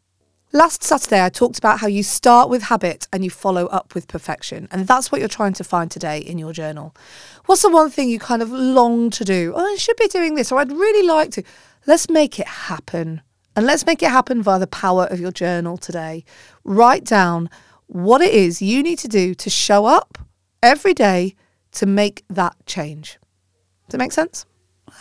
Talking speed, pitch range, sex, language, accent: 210 wpm, 175-265 Hz, female, English, British